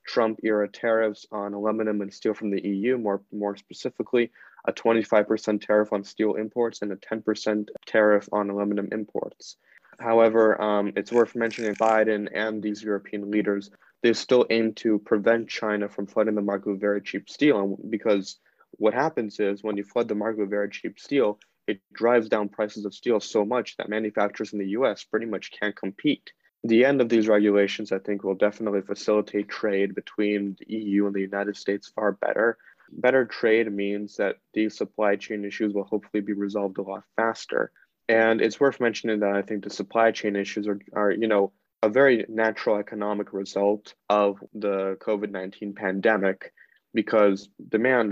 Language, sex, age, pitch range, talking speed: English, male, 20-39, 100-110 Hz, 175 wpm